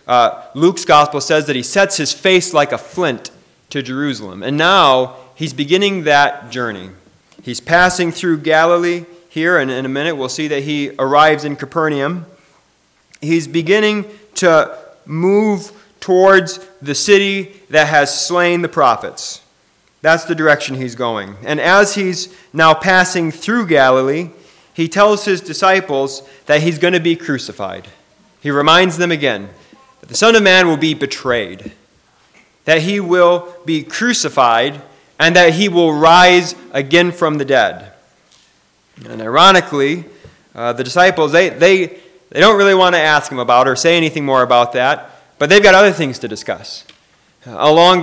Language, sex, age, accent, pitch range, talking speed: English, male, 30-49, American, 140-180 Hz, 155 wpm